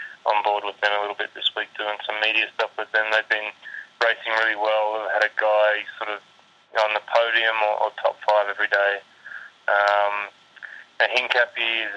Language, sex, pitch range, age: English, male, 105-110 Hz, 20-39